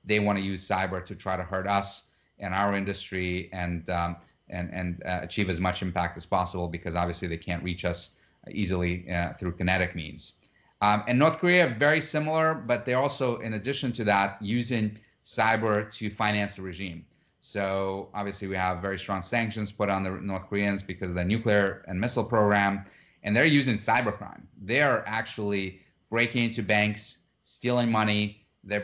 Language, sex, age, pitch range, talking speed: English, male, 30-49, 90-105 Hz, 180 wpm